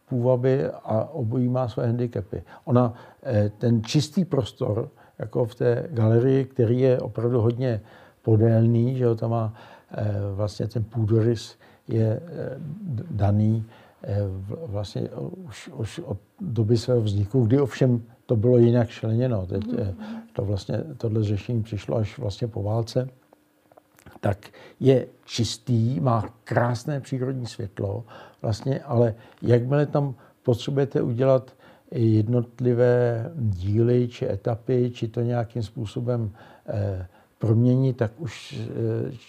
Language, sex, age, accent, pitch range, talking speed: Czech, male, 60-79, native, 110-125 Hz, 120 wpm